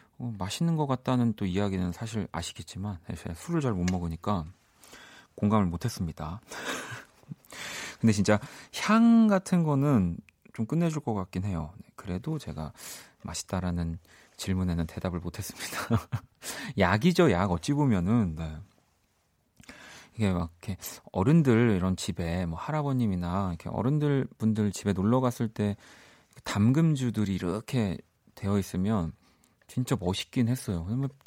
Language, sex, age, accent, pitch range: Korean, male, 40-59, native, 90-125 Hz